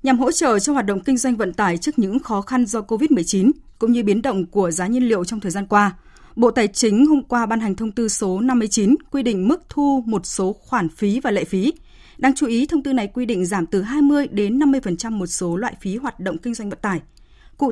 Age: 20-39